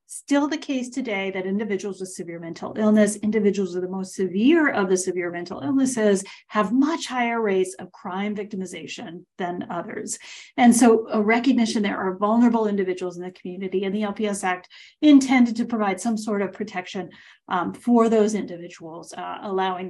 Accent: American